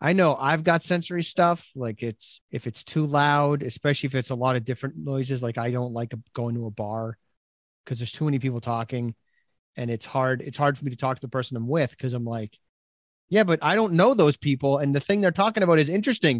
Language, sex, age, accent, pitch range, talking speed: English, male, 30-49, American, 120-160 Hz, 240 wpm